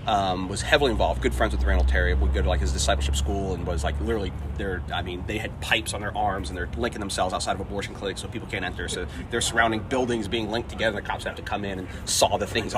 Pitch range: 90-110 Hz